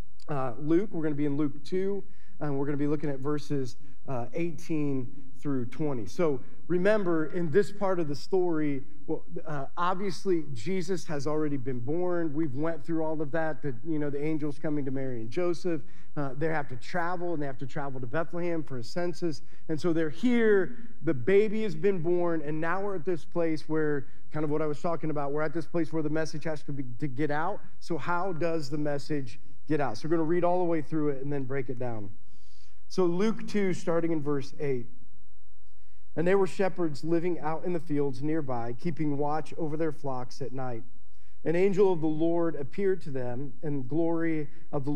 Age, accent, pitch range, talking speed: 40-59, American, 135-170 Hz, 215 wpm